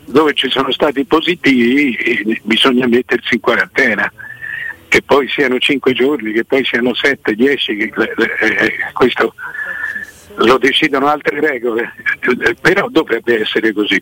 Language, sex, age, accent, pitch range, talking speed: Italian, male, 60-79, native, 120-165 Hz, 125 wpm